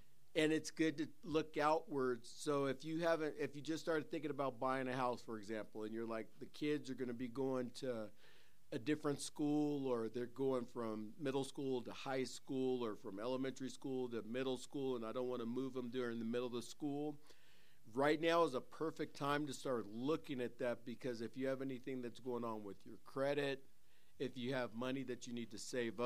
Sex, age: male, 50-69